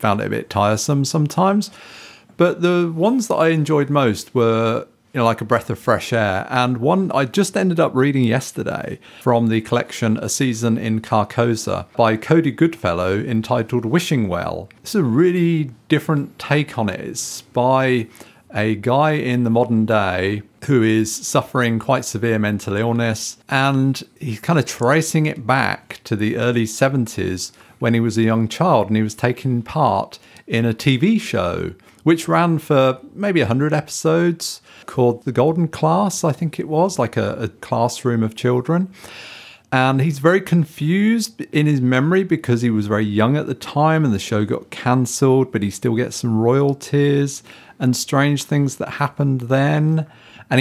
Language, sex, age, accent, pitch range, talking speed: English, male, 40-59, British, 115-155 Hz, 170 wpm